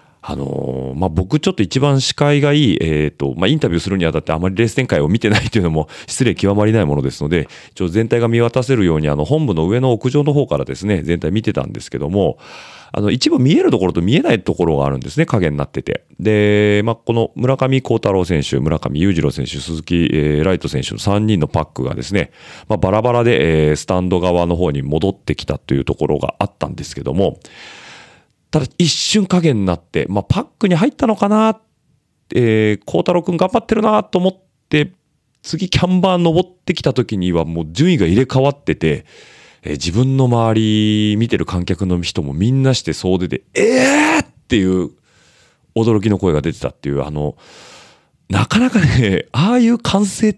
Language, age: Japanese, 40-59